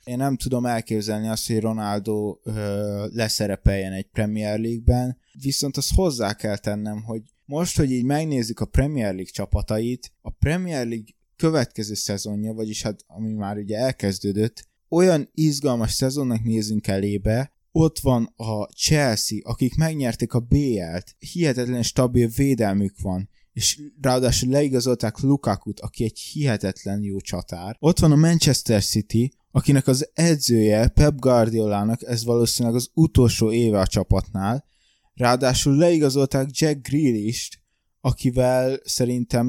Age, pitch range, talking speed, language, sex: 20-39, 105-135 Hz, 130 wpm, Hungarian, male